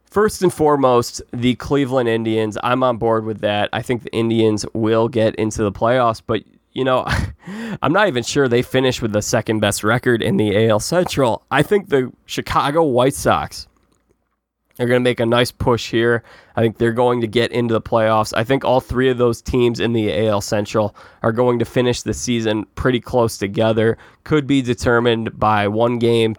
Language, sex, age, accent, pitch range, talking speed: English, male, 20-39, American, 110-130 Hz, 195 wpm